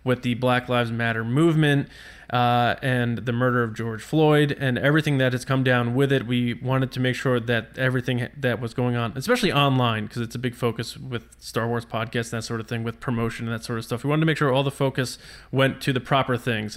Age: 20-39